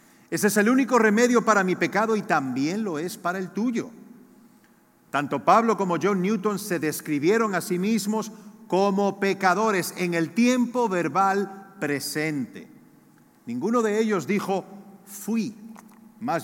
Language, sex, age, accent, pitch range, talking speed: Spanish, male, 50-69, Spanish, 165-220 Hz, 140 wpm